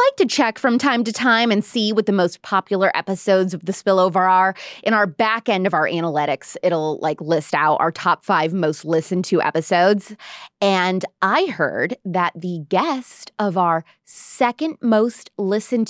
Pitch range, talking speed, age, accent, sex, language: 180-260 Hz, 175 wpm, 20-39, American, female, English